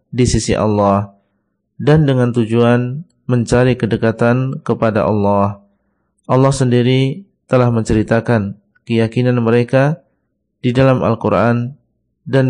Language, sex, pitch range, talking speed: Indonesian, male, 110-125 Hz, 95 wpm